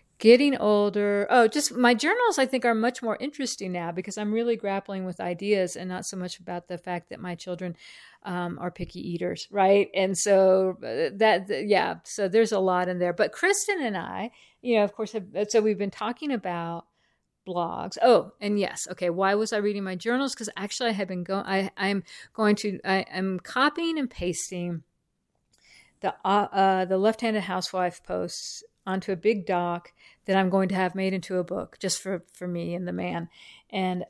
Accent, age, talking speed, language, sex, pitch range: American, 50-69, 195 wpm, English, female, 185-230 Hz